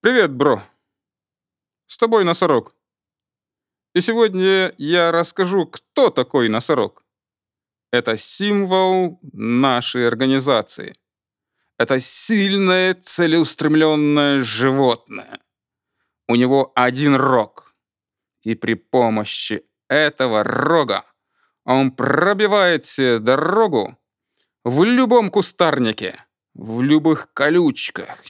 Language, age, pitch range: Russian, 30-49, 125-190 Hz